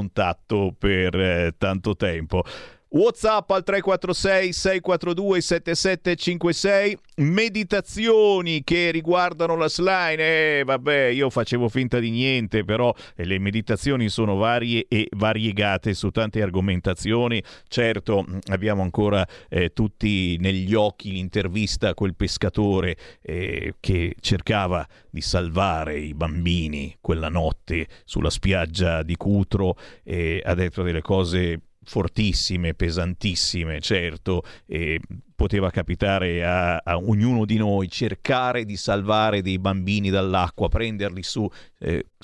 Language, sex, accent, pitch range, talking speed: Italian, male, native, 95-150 Hz, 115 wpm